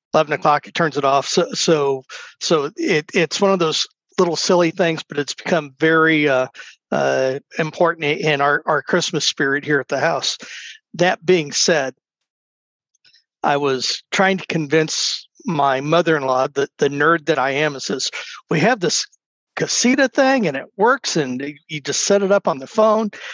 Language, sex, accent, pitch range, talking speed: English, male, American, 140-185 Hz, 175 wpm